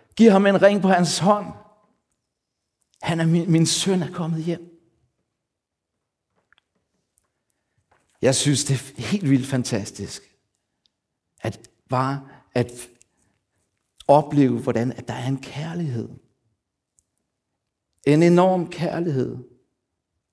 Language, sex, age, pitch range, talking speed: Danish, male, 60-79, 120-165 Hz, 105 wpm